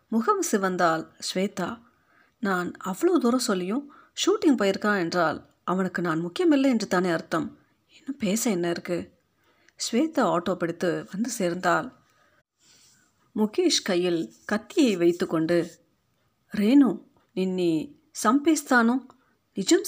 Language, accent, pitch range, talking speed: Tamil, native, 175-250 Hz, 100 wpm